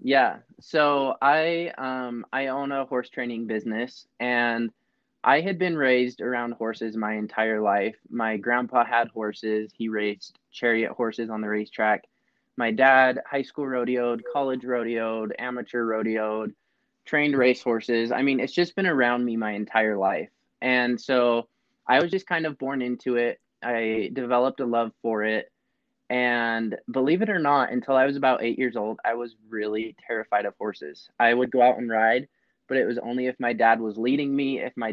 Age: 20-39